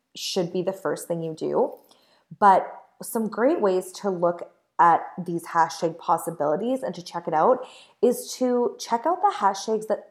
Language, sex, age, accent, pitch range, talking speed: English, female, 20-39, American, 175-230 Hz, 170 wpm